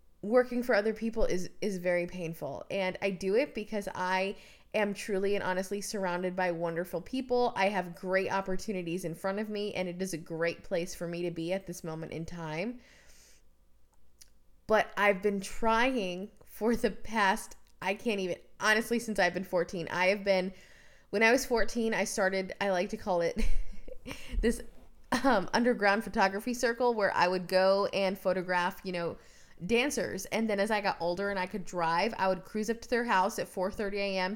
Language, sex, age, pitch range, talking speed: English, female, 20-39, 180-220 Hz, 190 wpm